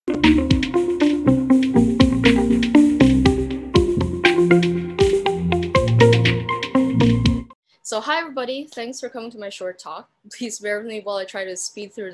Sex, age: female, 20-39